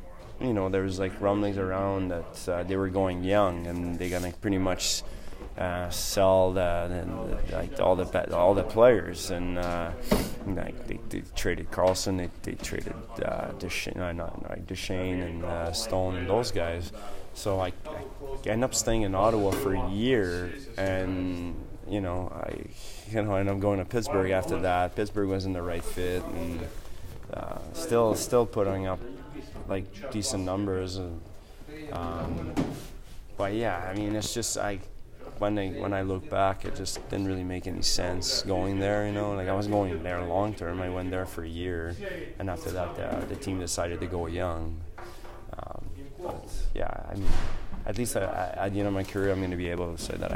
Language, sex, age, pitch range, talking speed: English, male, 20-39, 90-100 Hz, 195 wpm